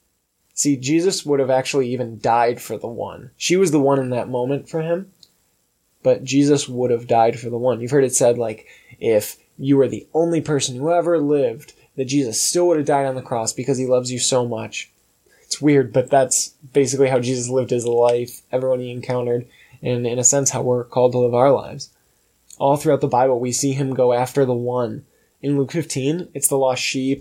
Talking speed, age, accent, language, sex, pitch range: 215 wpm, 10-29, American, English, male, 120-140 Hz